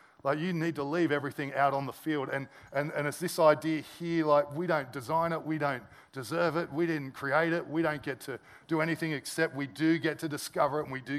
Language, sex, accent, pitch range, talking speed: English, male, Australian, 140-160 Hz, 245 wpm